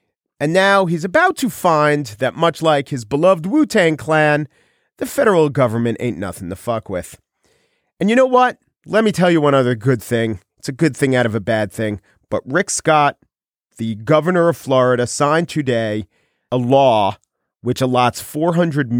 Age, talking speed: 40-59, 175 wpm